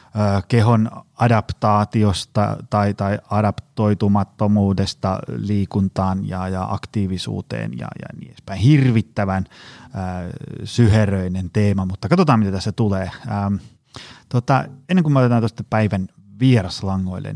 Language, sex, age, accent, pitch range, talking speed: Finnish, male, 30-49, native, 100-125 Hz, 105 wpm